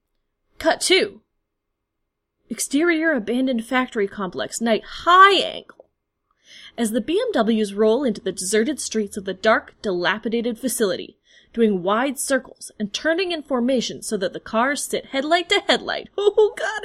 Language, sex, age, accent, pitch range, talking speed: English, female, 20-39, American, 215-310 Hz, 140 wpm